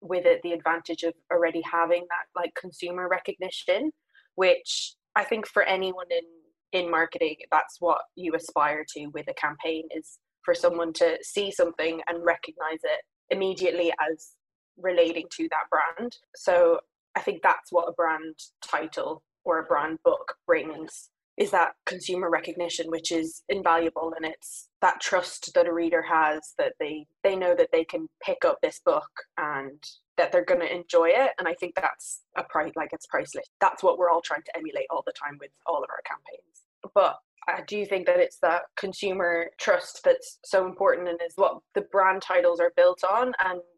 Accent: British